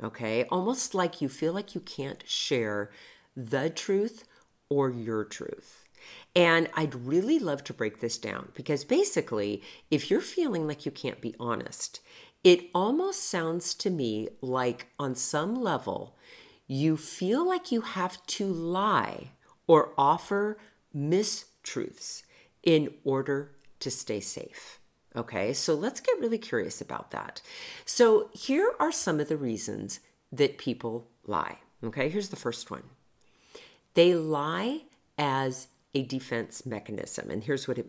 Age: 50-69